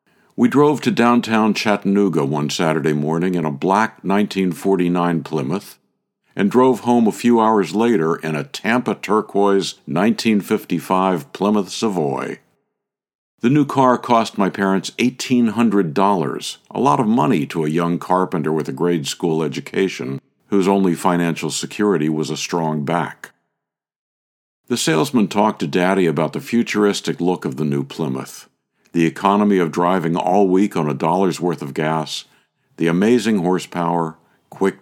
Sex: male